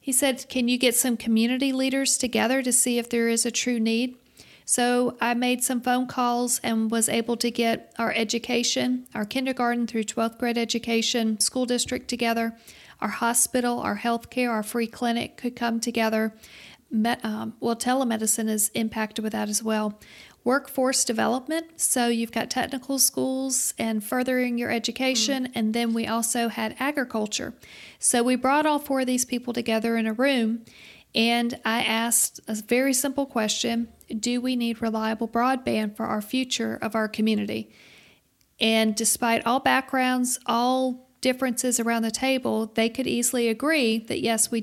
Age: 40-59